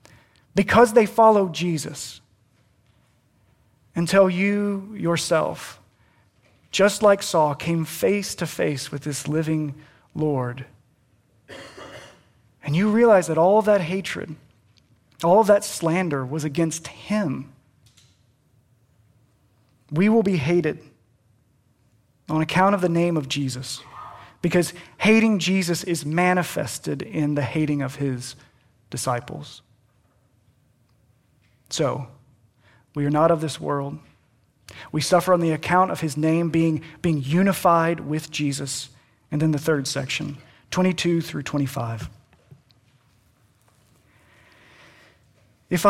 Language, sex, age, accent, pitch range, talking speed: English, male, 30-49, American, 125-175 Hz, 110 wpm